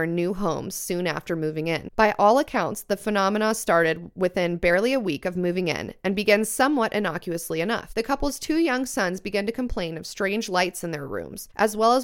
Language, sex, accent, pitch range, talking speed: English, female, American, 175-235 Hz, 205 wpm